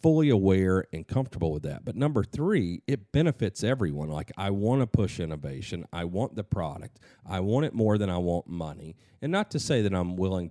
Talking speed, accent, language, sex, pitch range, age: 210 wpm, American, English, male, 85-115 Hz, 40-59